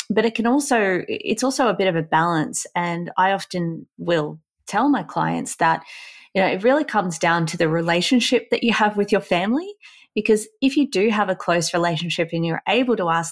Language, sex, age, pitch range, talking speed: English, female, 30-49, 160-200 Hz, 210 wpm